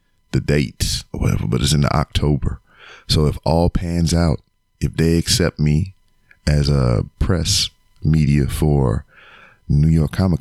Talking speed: 150 wpm